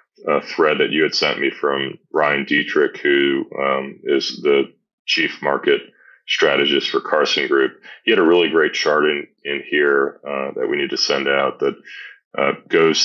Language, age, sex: English, 30-49, male